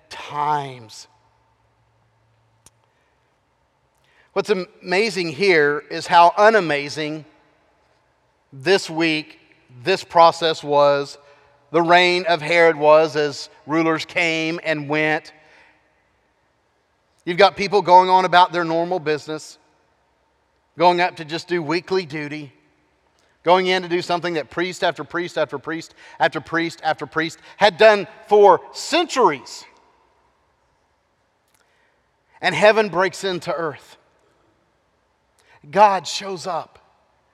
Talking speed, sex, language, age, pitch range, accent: 105 wpm, male, English, 40-59, 150-185 Hz, American